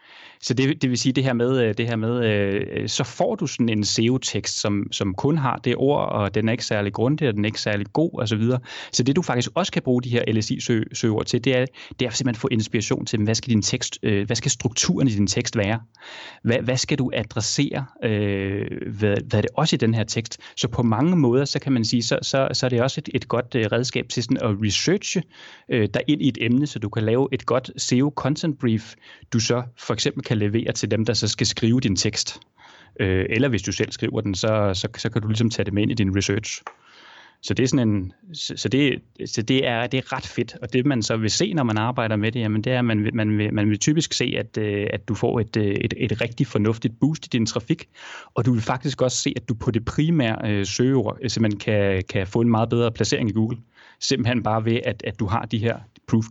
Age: 30-49